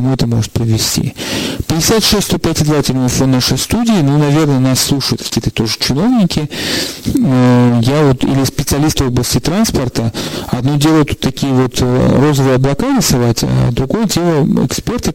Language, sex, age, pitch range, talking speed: Russian, male, 40-59, 120-150 Hz, 135 wpm